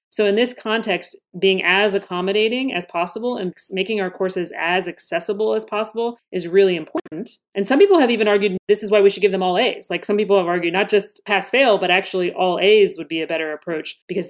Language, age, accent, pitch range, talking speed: English, 30-49, American, 180-215 Hz, 225 wpm